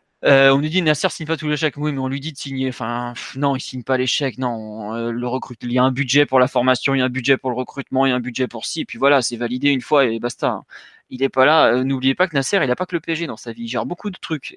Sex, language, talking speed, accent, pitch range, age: male, French, 330 wpm, French, 120-150 Hz, 20-39